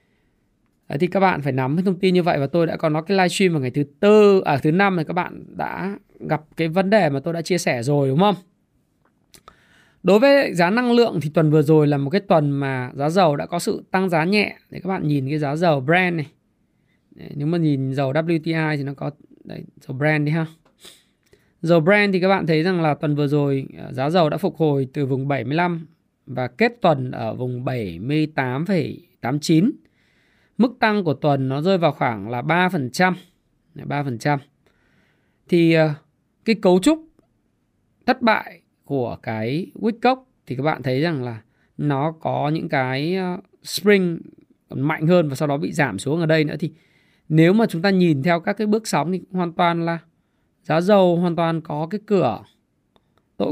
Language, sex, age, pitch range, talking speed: Vietnamese, male, 20-39, 145-185 Hz, 195 wpm